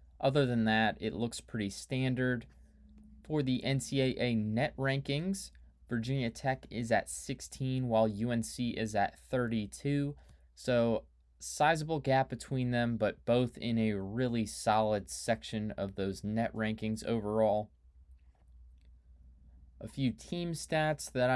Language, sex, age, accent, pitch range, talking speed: English, male, 20-39, American, 100-125 Hz, 125 wpm